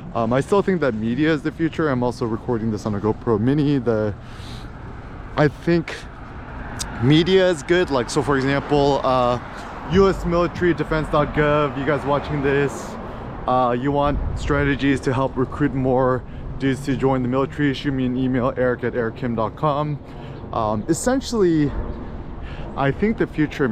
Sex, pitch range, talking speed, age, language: male, 125-160 Hz, 145 wpm, 30-49, English